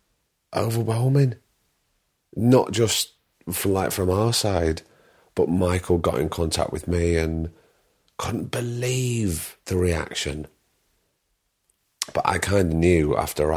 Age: 30-49